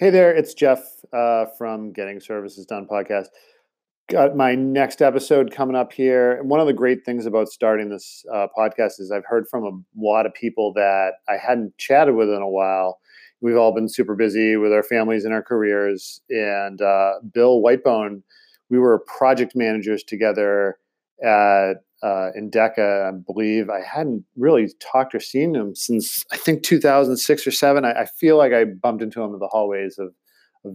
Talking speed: 185 wpm